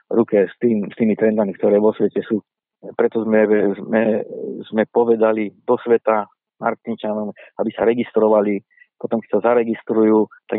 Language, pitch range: Slovak, 105-115 Hz